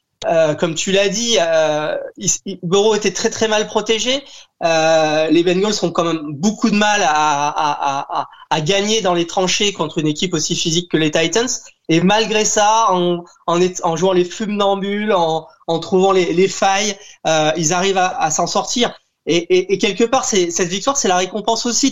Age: 20-39